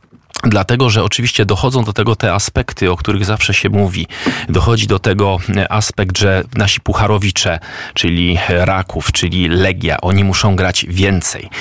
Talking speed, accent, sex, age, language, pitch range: 145 wpm, native, male, 40-59, Polish, 90-110 Hz